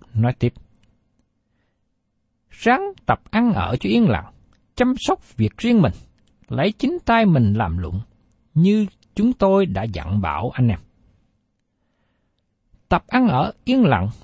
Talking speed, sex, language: 140 wpm, male, Vietnamese